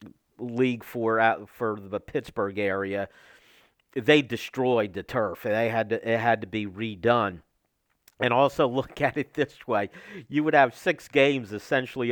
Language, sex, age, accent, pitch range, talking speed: English, male, 50-69, American, 110-135 Hz, 160 wpm